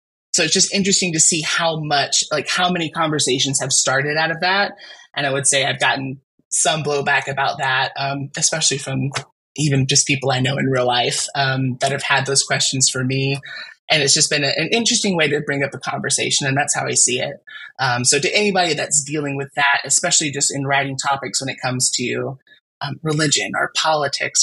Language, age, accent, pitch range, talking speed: English, 20-39, American, 140-170 Hz, 210 wpm